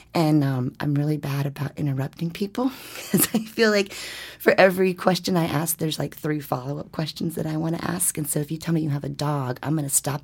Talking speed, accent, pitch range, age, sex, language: 240 wpm, American, 145-170 Hz, 30-49, female, English